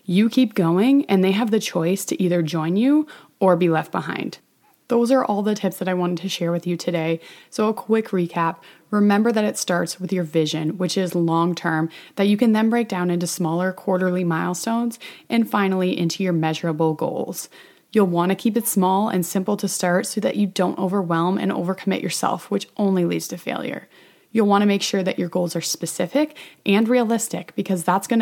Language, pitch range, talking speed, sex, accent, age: English, 175-215 Hz, 210 wpm, female, American, 20-39